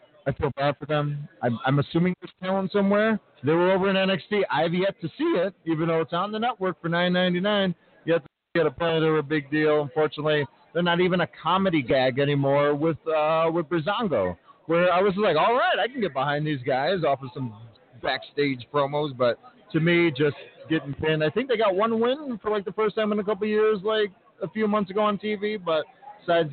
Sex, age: male, 40-59